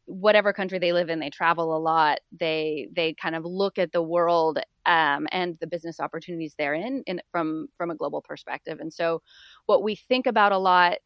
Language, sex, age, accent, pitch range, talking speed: English, female, 30-49, American, 165-200 Hz, 200 wpm